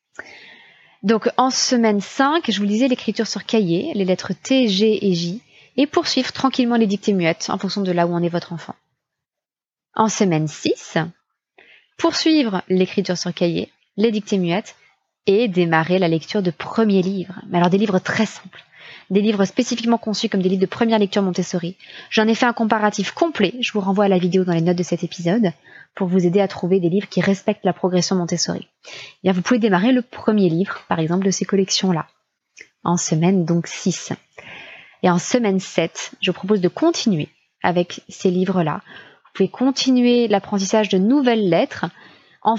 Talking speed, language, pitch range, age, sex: 185 wpm, French, 180-220 Hz, 20-39, female